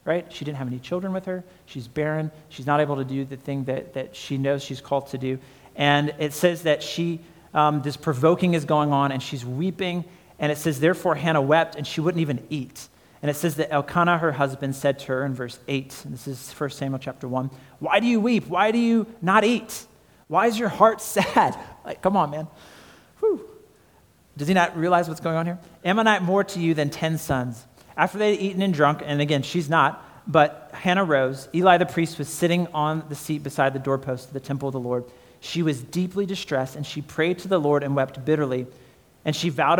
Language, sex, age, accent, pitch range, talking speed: English, male, 40-59, American, 140-175 Hz, 230 wpm